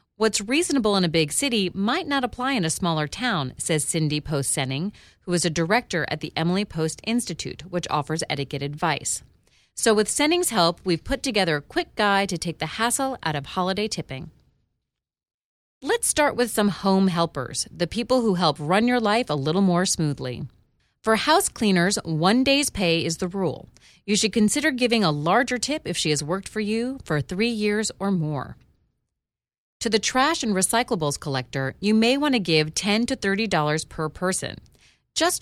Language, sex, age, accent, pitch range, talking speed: English, female, 30-49, American, 155-230 Hz, 185 wpm